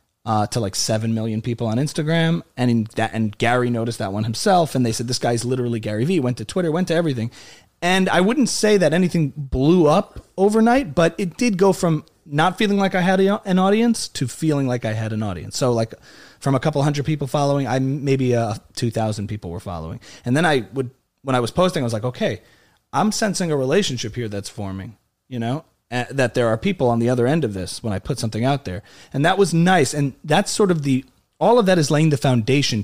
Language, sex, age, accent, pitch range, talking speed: English, male, 30-49, American, 115-155 Hz, 235 wpm